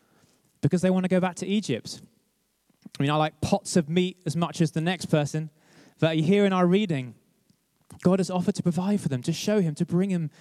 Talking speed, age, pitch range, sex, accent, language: 225 wpm, 20-39, 145-190 Hz, male, British, English